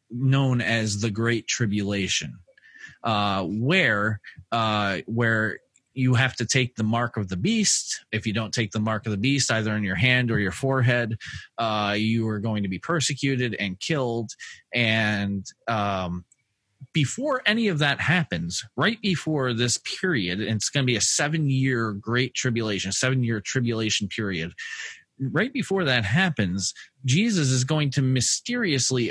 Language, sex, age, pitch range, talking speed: English, male, 30-49, 110-140 Hz, 155 wpm